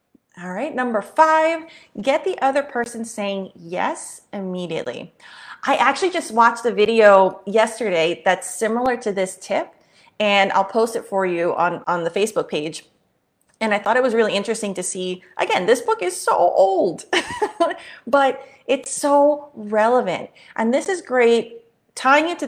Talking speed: 160 wpm